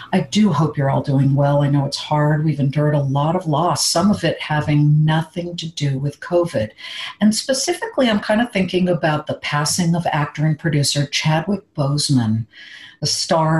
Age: 50-69